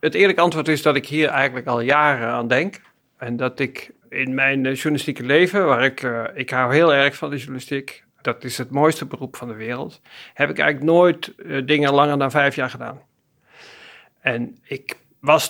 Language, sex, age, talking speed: Dutch, male, 50-69, 200 wpm